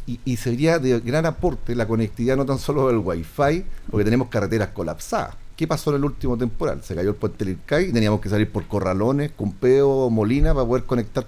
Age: 40-59